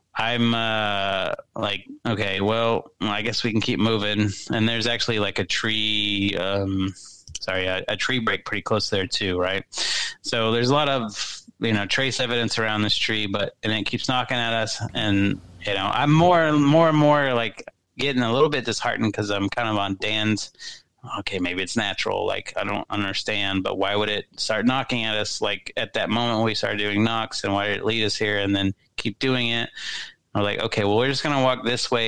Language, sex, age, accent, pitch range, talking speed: English, male, 30-49, American, 100-120 Hz, 215 wpm